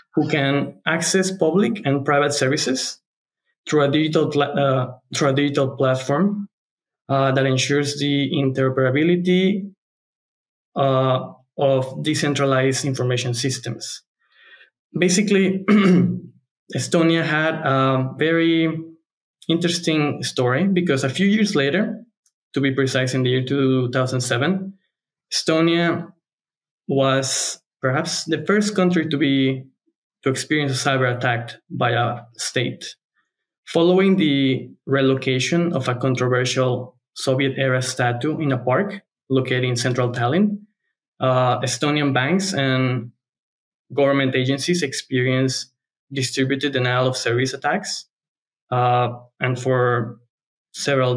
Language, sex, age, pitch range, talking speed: English, male, 20-39, 130-165 Hz, 105 wpm